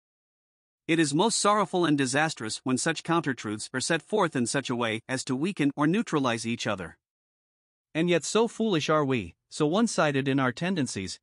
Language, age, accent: English, 50-69, American